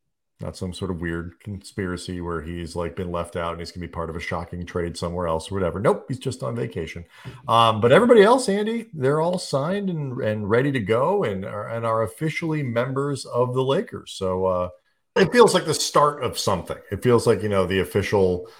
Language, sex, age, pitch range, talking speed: English, male, 40-59, 85-115 Hz, 225 wpm